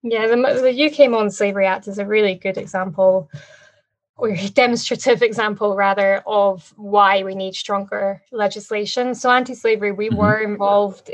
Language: English